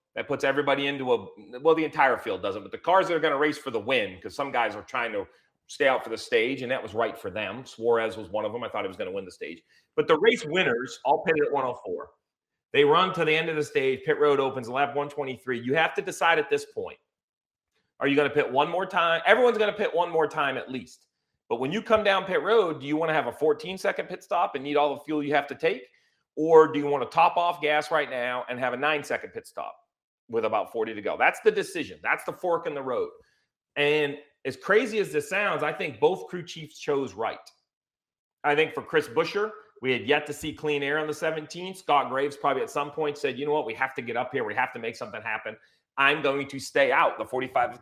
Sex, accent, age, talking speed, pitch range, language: male, American, 40-59, 265 wpm, 145-230 Hz, English